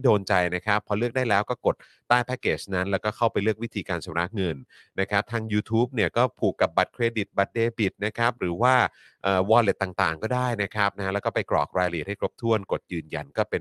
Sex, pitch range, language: male, 90-115 Hz, Thai